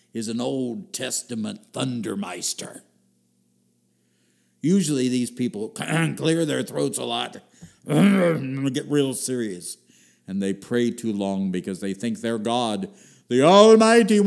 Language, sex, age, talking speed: English, male, 60-79, 120 wpm